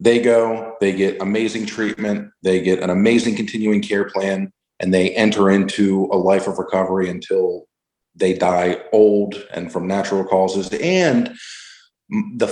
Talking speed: 150 wpm